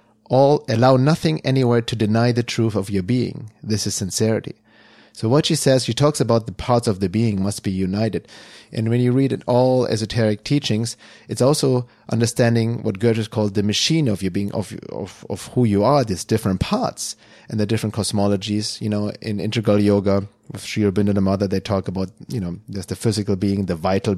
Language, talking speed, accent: English, 200 wpm, German